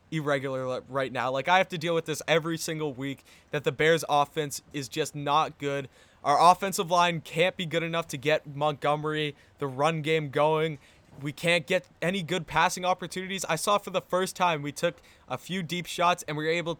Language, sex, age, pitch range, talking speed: English, male, 20-39, 145-165 Hz, 205 wpm